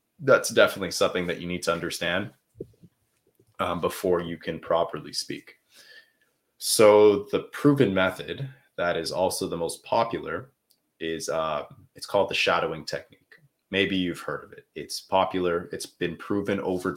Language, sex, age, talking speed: English, male, 20-39, 150 wpm